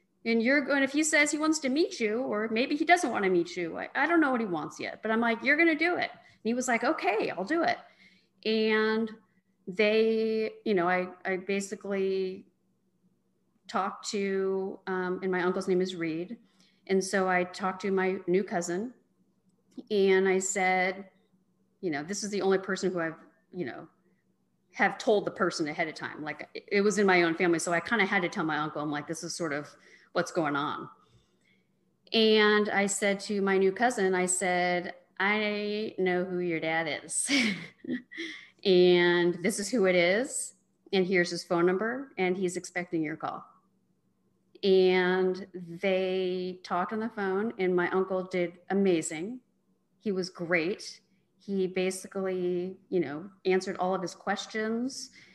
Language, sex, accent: English, female, American